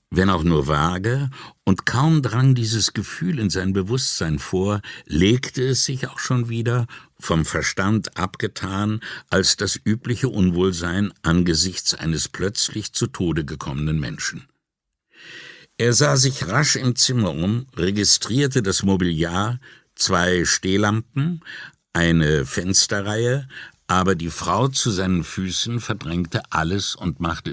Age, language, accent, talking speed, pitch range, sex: 60-79, English, German, 125 wpm, 90-120 Hz, male